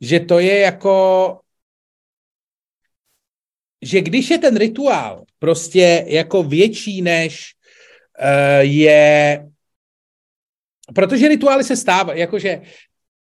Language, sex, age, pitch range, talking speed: Czech, male, 40-59, 125-170 Hz, 85 wpm